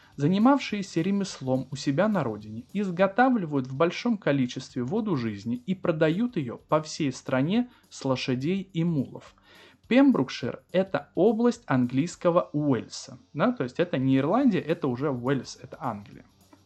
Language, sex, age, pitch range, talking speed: Russian, male, 20-39, 135-195 Hz, 135 wpm